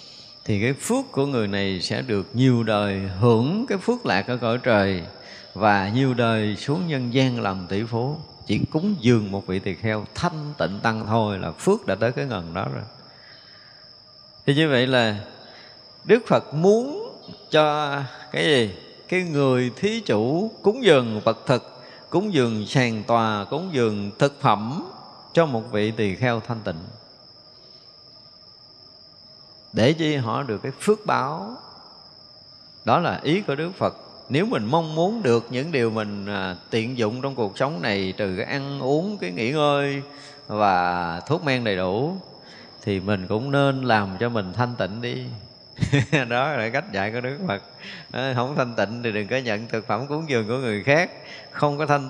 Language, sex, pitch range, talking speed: Vietnamese, male, 105-140 Hz, 175 wpm